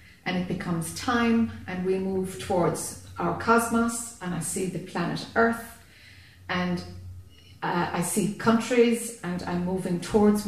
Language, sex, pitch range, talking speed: English, female, 160-220 Hz, 145 wpm